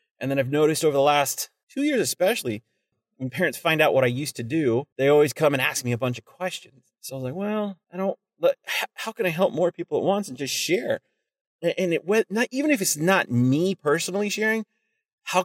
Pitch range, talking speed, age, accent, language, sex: 130-200 Hz, 230 wpm, 30-49, American, English, male